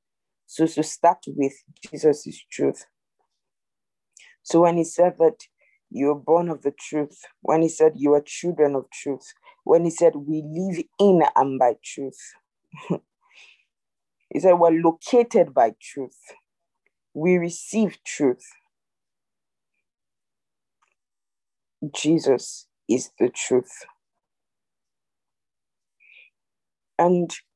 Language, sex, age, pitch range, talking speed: English, female, 50-69, 140-180 Hz, 105 wpm